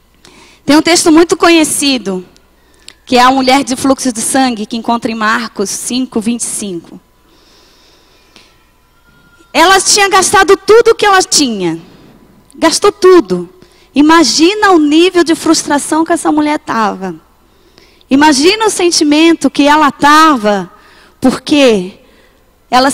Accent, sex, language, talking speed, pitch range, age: Brazilian, female, Portuguese, 120 wpm, 250-330 Hz, 20-39